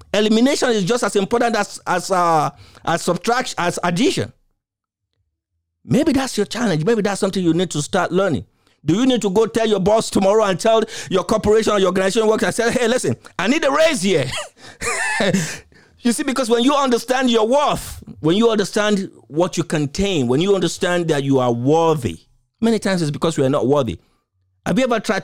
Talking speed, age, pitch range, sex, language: 195 wpm, 50-69, 135-225 Hz, male, English